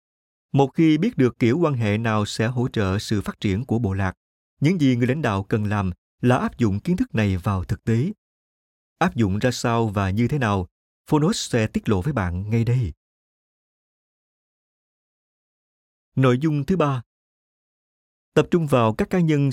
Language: Vietnamese